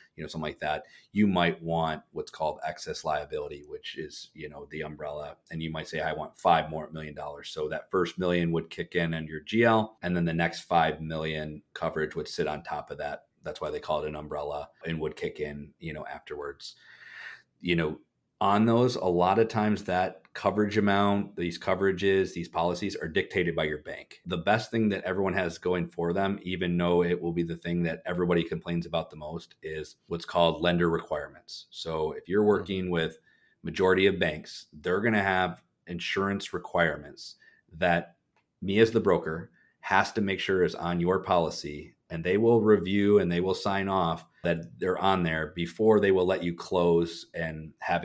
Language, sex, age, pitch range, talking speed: English, male, 30-49, 85-95 Hz, 200 wpm